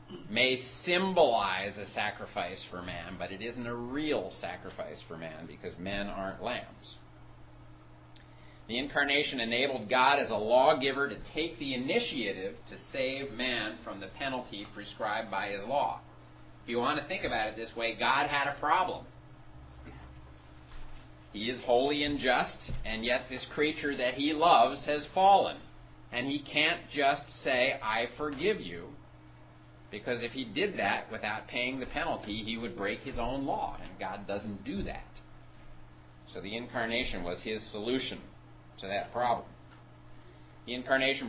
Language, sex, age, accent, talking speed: English, male, 40-59, American, 155 wpm